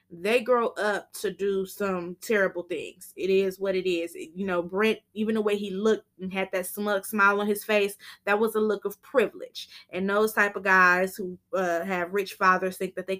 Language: English